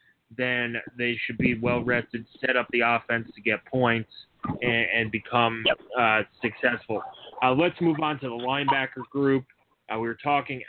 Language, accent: English, American